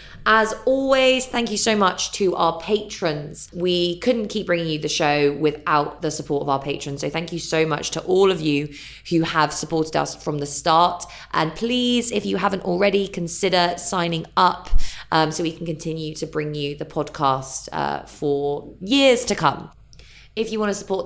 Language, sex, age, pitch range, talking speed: English, female, 20-39, 150-200 Hz, 190 wpm